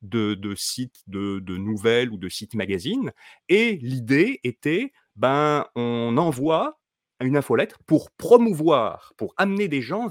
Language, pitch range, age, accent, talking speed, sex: French, 115-170 Hz, 30-49, French, 140 wpm, male